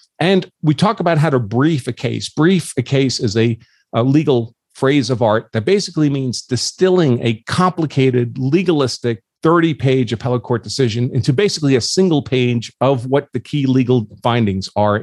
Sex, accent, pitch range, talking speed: male, American, 110-140 Hz, 170 wpm